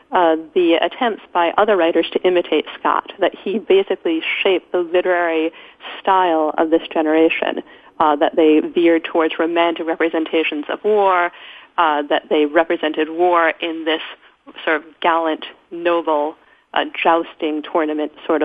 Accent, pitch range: American, 165-190 Hz